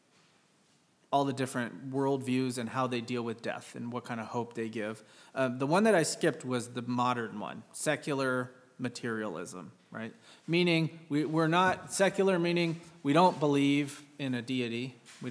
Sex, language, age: male, English, 30-49